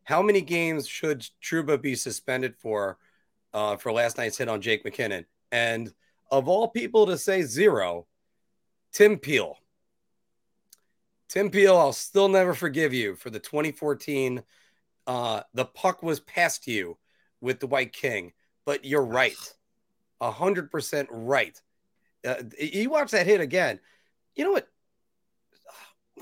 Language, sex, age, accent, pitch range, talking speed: English, male, 30-49, American, 115-180 Hz, 135 wpm